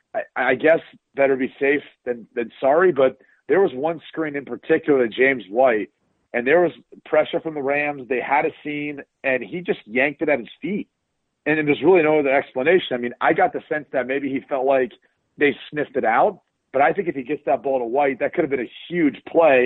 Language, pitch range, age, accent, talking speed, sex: English, 130-155 Hz, 40-59, American, 230 wpm, male